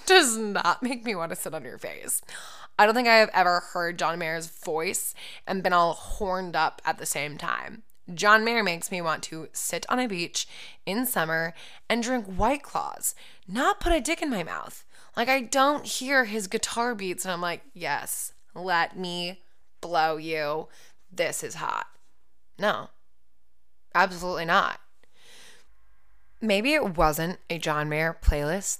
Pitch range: 165-230 Hz